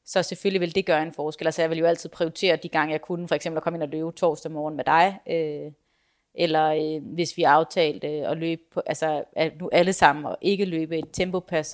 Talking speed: 240 wpm